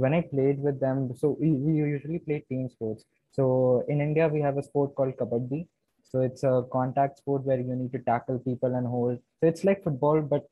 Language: English